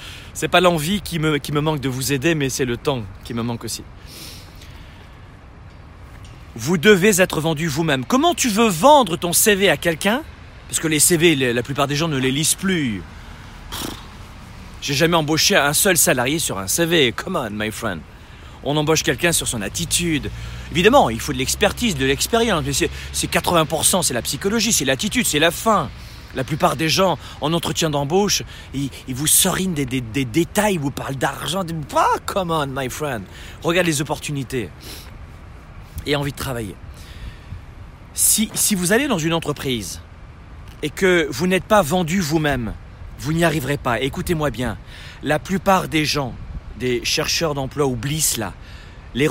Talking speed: 175 wpm